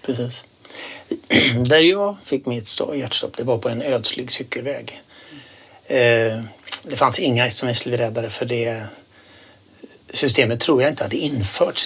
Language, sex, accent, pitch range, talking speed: Swedish, male, native, 120-140 Hz, 115 wpm